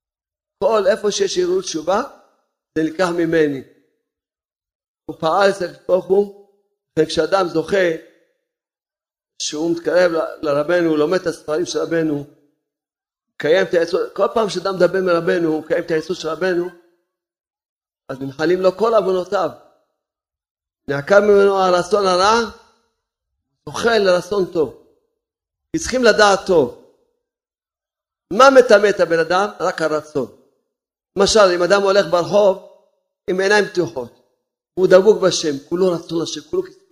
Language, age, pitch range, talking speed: Hebrew, 50-69, 160-210 Hz, 115 wpm